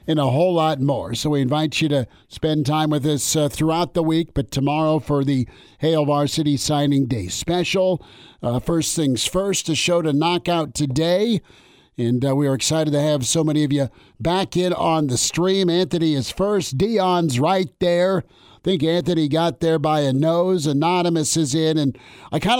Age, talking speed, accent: 50-69, 195 wpm, American